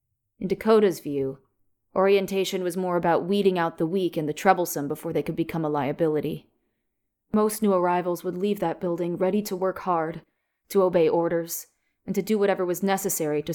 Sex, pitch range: female, 160-205 Hz